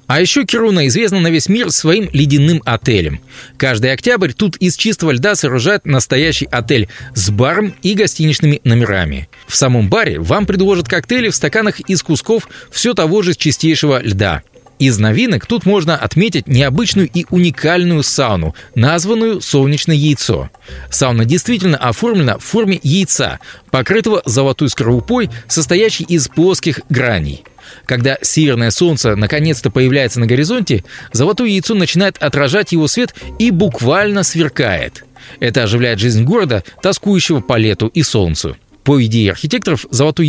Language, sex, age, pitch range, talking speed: Russian, male, 20-39, 120-180 Hz, 140 wpm